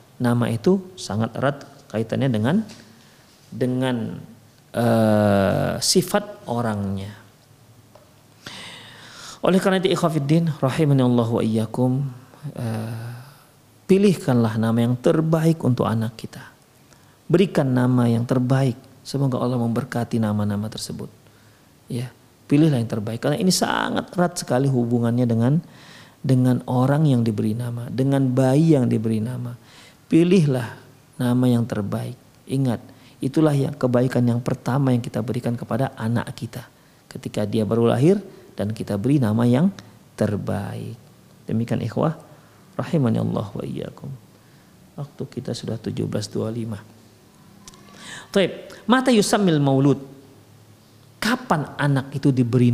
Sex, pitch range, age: male, 115-145 Hz, 40-59